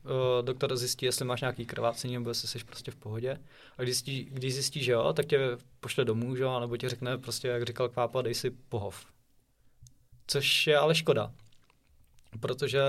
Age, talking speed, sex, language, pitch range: 20-39, 185 wpm, male, Czech, 125-145 Hz